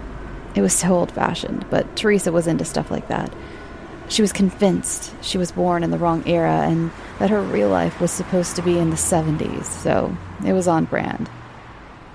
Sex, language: female, English